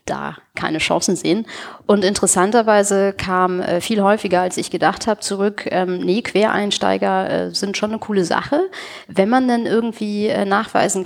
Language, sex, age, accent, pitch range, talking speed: German, female, 30-49, German, 170-205 Hz, 165 wpm